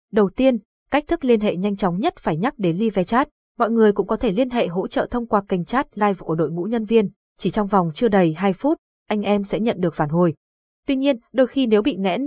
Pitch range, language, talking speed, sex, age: 190-240 Hz, Vietnamese, 265 wpm, female, 20-39